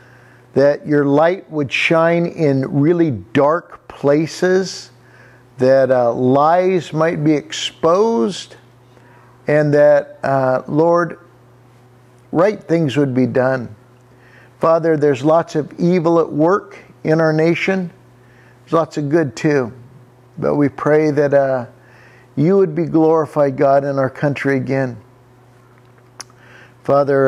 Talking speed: 120 wpm